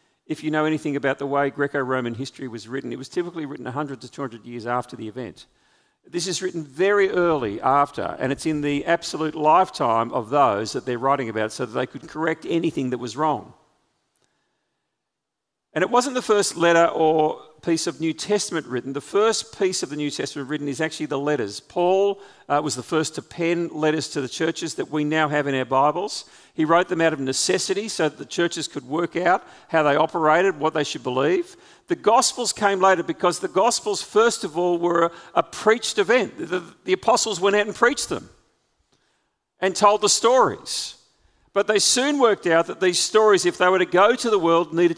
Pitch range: 145-190 Hz